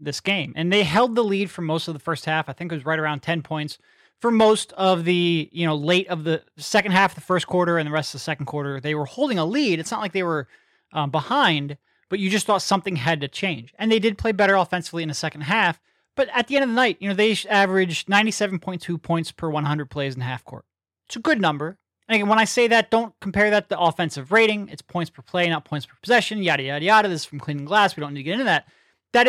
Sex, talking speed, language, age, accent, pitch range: male, 275 wpm, English, 30-49, American, 155-195 Hz